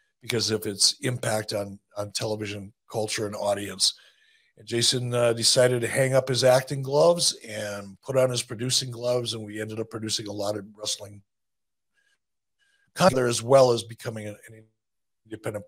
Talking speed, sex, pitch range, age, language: 160 wpm, male, 110-140 Hz, 50-69, English